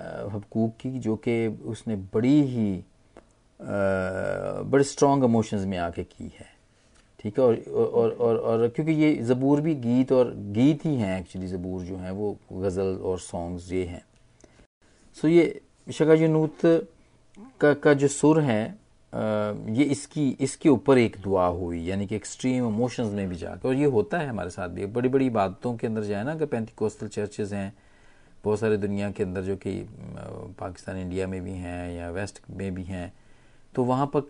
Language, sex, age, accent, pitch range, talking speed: Hindi, male, 40-59, native, 100-140 Hz, 170 wpm